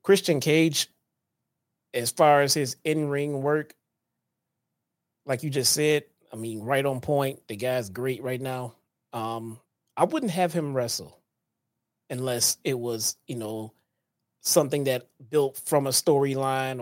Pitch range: 130-155 Hz